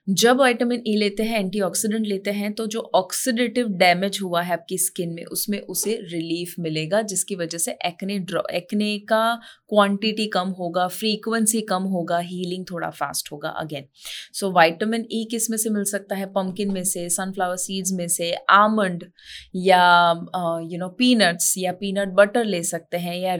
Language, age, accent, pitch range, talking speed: Hindi, 20-39, native, 180-225 Hz, 170 wpm